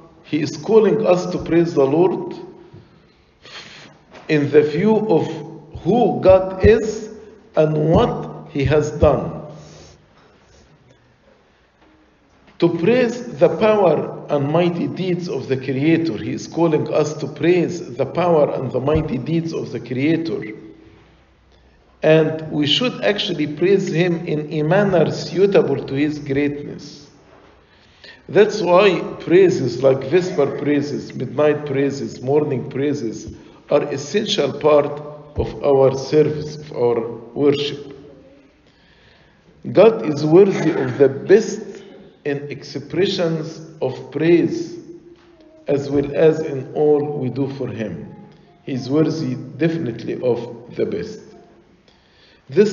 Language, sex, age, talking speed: English, male, 50-69, 120 wpm